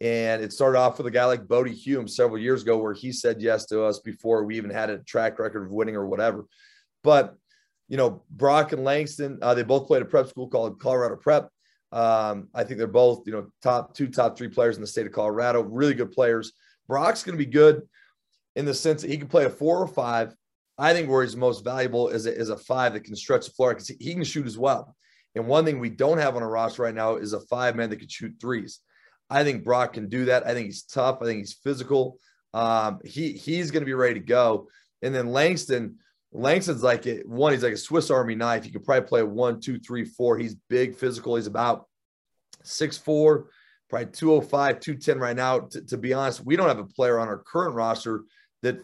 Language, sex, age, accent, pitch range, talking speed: English, male, 30-49, American, 115-140 Hz, 235 wpm